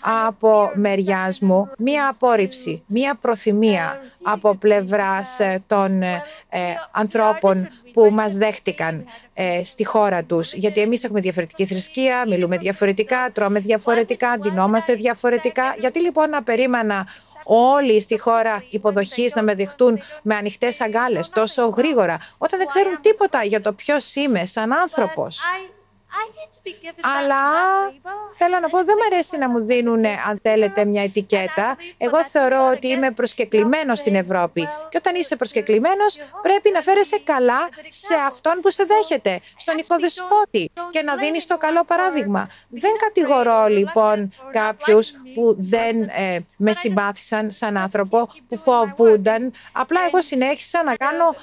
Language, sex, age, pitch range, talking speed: Greek, female, 30-49, 210-310 Hz, 135 wpm